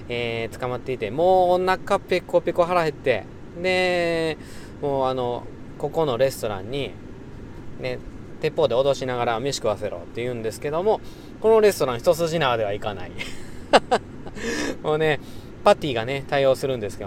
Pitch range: 120-175 Hz